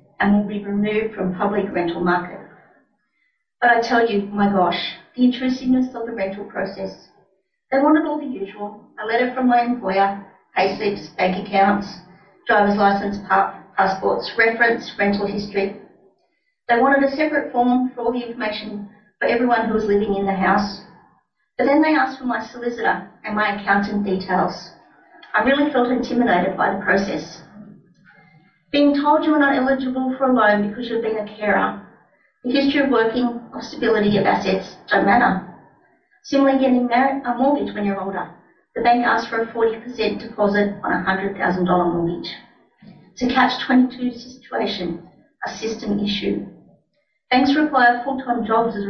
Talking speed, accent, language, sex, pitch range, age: 160 wpm, Australian, English, female, 195-245 Hz, 40-59